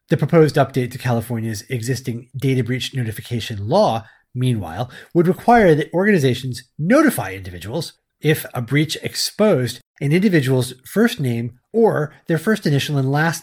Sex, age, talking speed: male, 30-49, 140 wpm